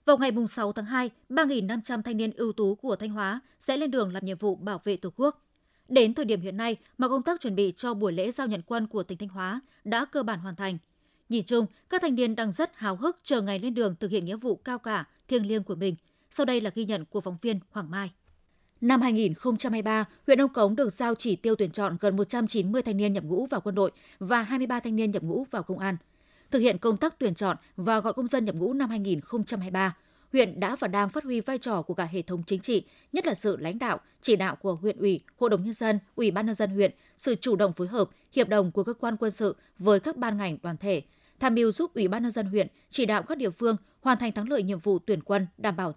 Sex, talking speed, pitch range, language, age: female, 260 wpm, 195-245 Hz, Vietnamese, 20-39